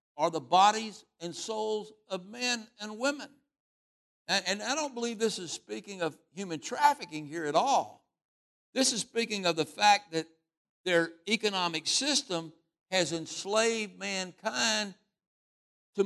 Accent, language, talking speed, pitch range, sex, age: American, English, 140 wpm, 160-220 Hz, male, 60-79